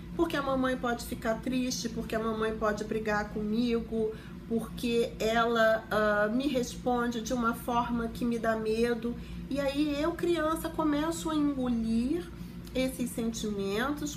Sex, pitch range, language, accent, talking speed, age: female, 220-275 Hz, Portuguese, Brazilian, 135 wpm, 40-59